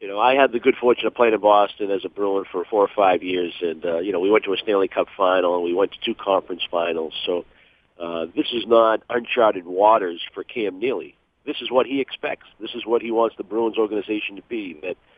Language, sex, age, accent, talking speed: English, male, 50-69, American, 250 wpm